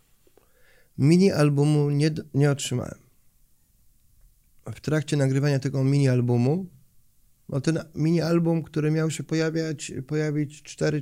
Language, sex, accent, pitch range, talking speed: Polish, male, native, 130-160 Hz, 115 wpm